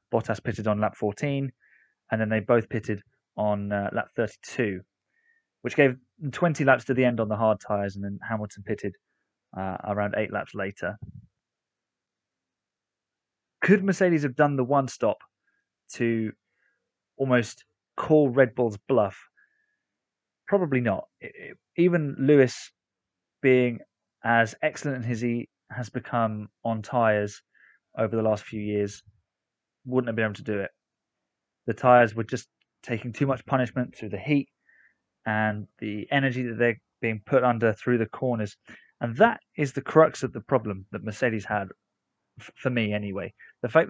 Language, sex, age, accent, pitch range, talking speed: English, male, 20-39, British, 105-140 Hz, 150 wpm